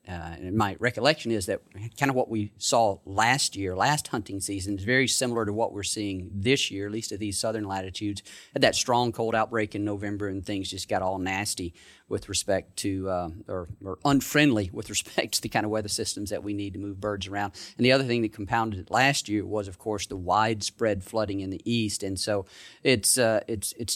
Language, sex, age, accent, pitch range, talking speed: English, male, 40-59, American, 100-115 Hz, 225 wpm